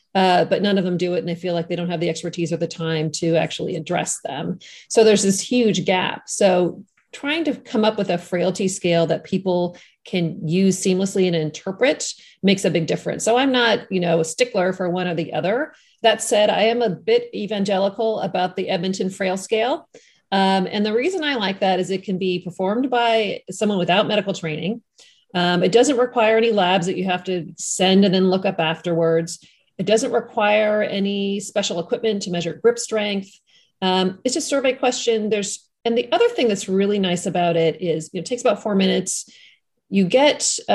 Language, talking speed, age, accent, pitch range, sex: English, 210 wpm, 40-59, American, 175-220 Hz, female